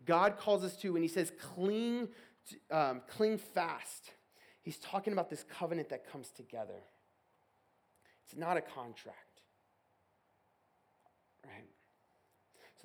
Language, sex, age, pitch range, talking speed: English, male, 30-49, 135-175 Hz, 115 wpm